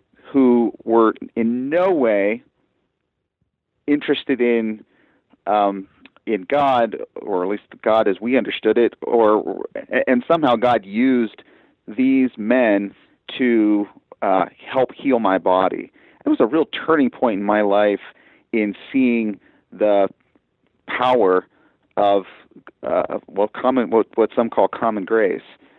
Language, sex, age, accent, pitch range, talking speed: English, male, 40-59, American, 105-125 Hz, 125 wpm